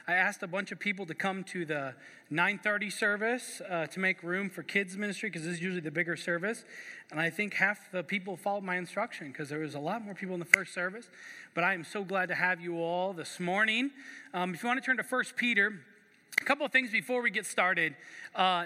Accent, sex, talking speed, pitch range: American, male, 240 wpm, 175-210 Hz